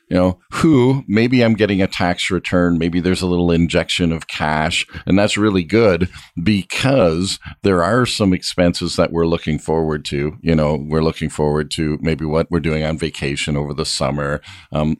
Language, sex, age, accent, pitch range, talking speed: English, male, 50-69, American, 75-95 Hz, 185 wpm